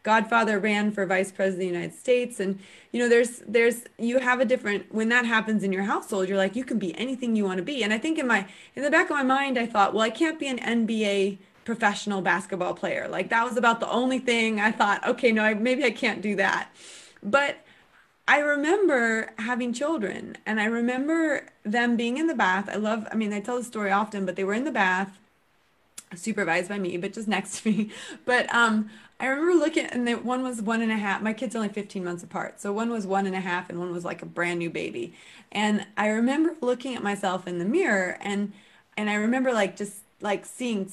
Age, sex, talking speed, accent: 20-39, female, 235 wpm, American